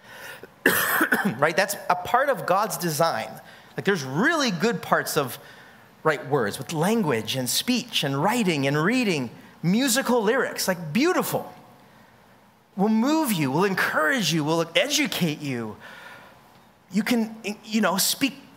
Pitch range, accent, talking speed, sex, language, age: 155-230 Hz, American, 135 wpm, male, English, 30-49